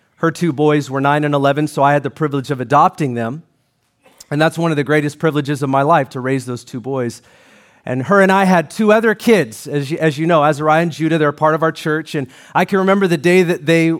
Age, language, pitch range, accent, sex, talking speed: 40-59, English, 160-245 Hz, American, male, 255 wpm